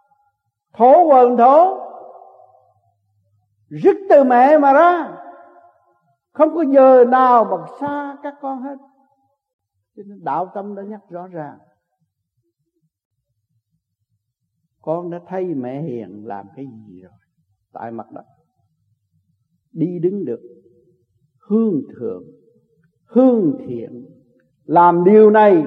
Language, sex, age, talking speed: Vietnamese, male, 60-79, 105 wpm